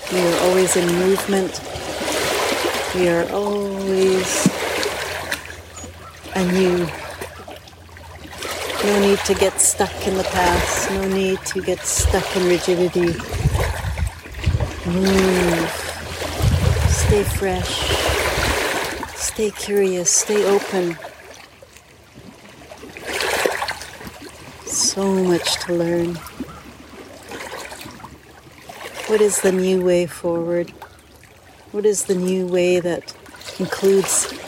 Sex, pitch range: female, 165-190 Hz